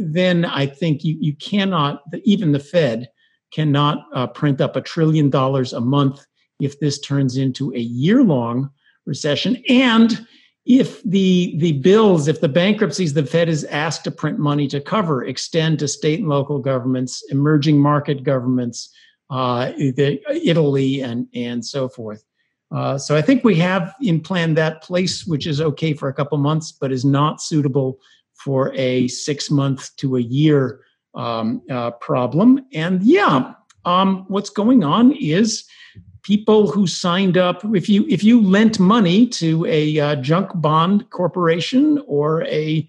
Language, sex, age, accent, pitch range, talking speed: English, male, 50-69, American, 140-195 Hz, 160 wpm